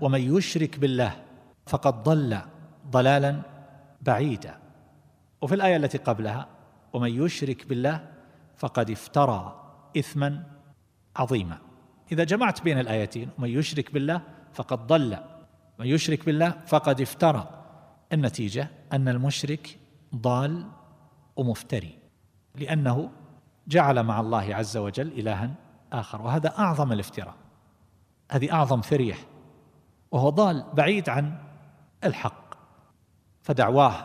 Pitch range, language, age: 115-155 Hz, Arabic, 50-69